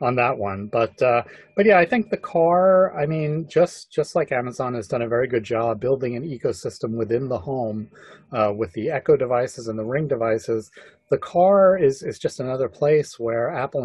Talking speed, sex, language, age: 205 wpm, male, English, 30-49